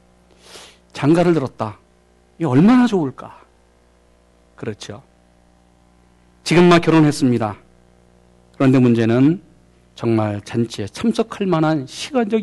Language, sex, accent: Korean, male, native